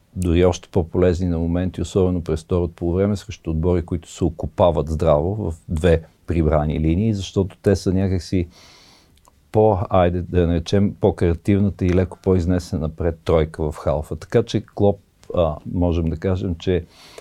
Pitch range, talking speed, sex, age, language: 85-100 Hz, 155 wpm, male, 50-69, Bulgarian